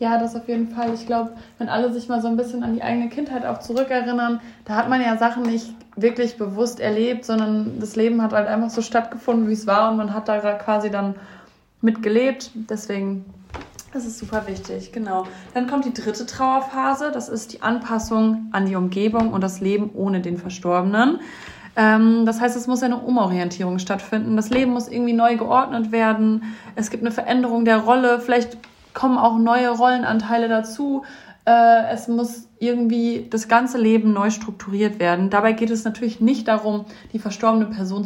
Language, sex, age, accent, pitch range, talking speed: German, female, 20-39, German, 215-235 Hz, 185 wpm